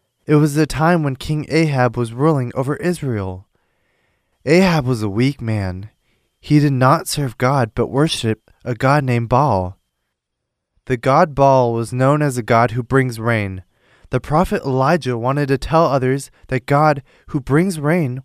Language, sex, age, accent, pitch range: Korean, male, 20-39, American, 120-155 Hz